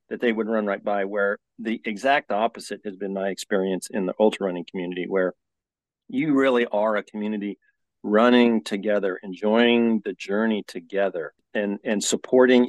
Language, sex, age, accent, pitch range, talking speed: English, male, 40-59, American, 100-120 Hz, 160 wpm